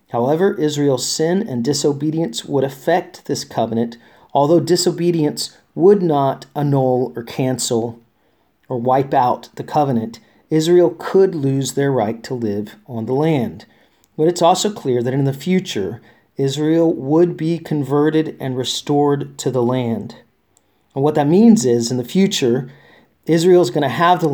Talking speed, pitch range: 155 wpm, 115-150 Hz